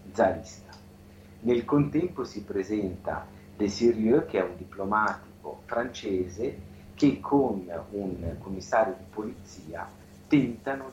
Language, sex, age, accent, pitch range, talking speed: Italian, male, 40-59, native, 90-100 Hz, 100 wpm